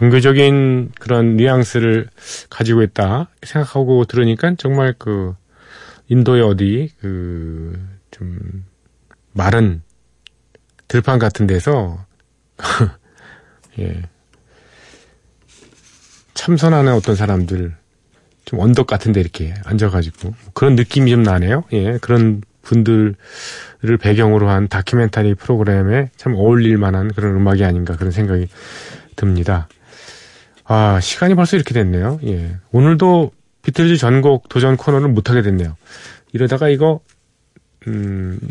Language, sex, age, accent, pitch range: Korean, male, 40-59, native, 95-130 Hz